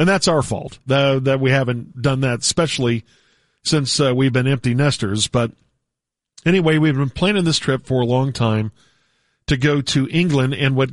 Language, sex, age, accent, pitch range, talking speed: English, male, 40-59, American, 120-145 Hz, 175 wpm